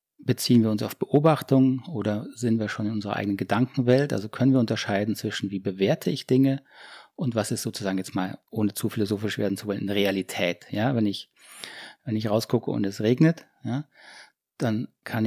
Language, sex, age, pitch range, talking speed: German, male, 30-49, 105-130 Hz, 180 wpm